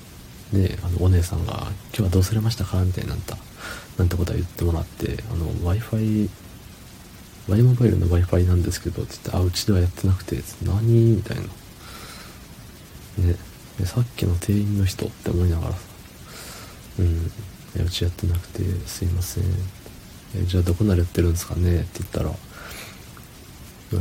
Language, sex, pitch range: Japanese, male, 90-110 Hz